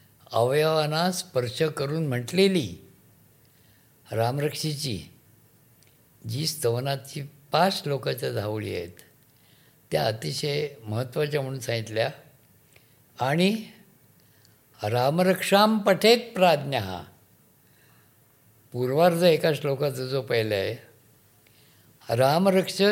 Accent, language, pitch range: native, Marathi, 125-165 Hz